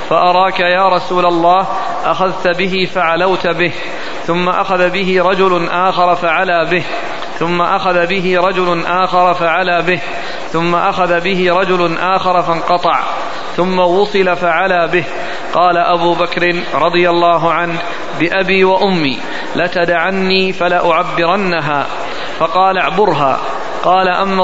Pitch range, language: 175-190 Hz, Arabic